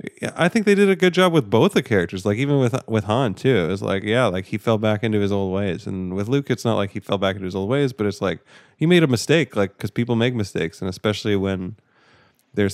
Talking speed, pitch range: 275 wpm, 95-115 Hz